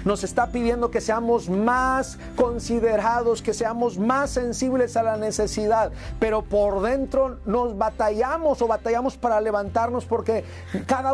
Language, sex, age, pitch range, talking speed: Spanish, male, 40-59, 190-255 Hz, 135 wpm